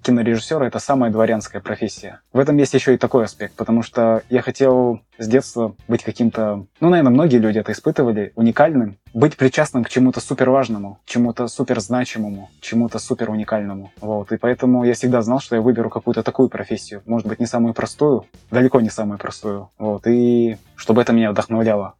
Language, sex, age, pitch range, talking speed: Russian, male, 20-39, 110-130 Hz, 180 wpm